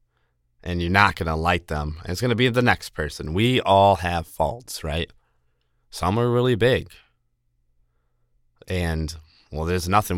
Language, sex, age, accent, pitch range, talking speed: English, male, 20-39, American, 75-110 Hz, 160 wpm